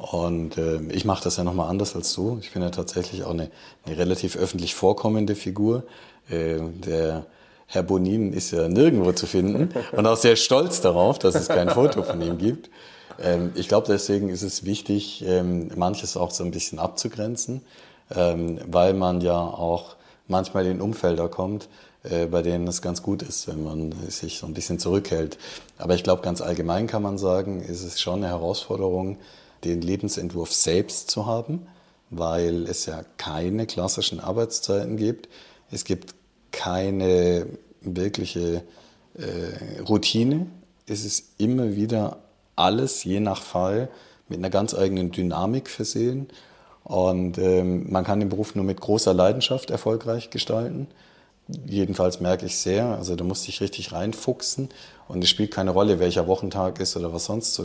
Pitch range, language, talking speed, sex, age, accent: 85-105 Hz, German, 165 wpm, male, 30-49, German